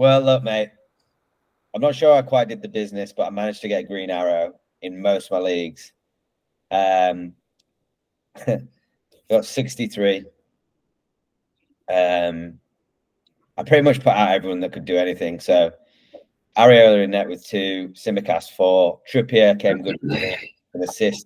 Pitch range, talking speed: 90-110 Hz, 145 wpm